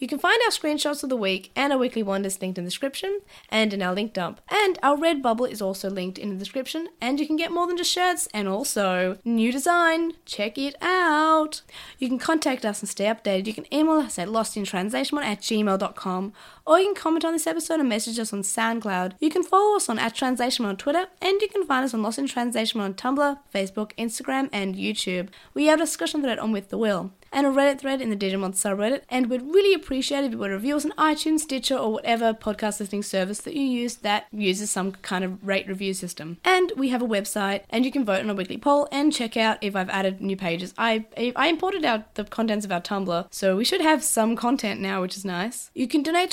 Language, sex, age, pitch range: English, female, 20-39, 200-295 Hz